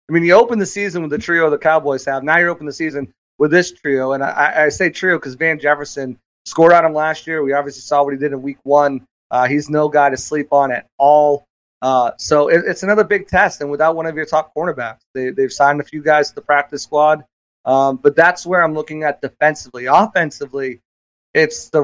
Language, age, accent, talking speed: English, 30-49, American, 235 wpm